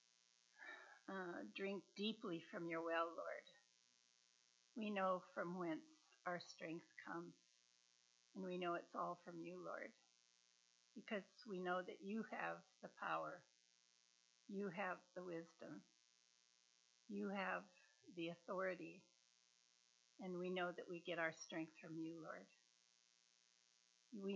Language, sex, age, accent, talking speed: English, female, 60-79, American, 125 wpm